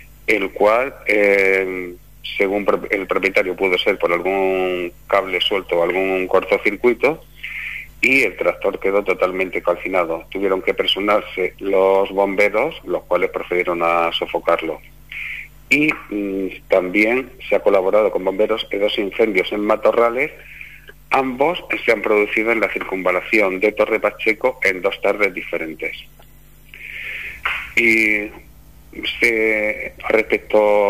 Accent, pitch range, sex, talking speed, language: Spanish, 95-120 Hz, male, 115 wpm, Spanish